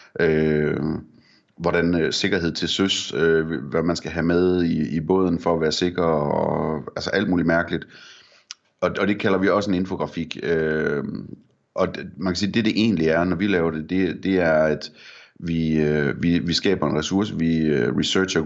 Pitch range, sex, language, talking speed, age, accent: 75-90 Hz, male, Danish, 195 wpm, 30-49, native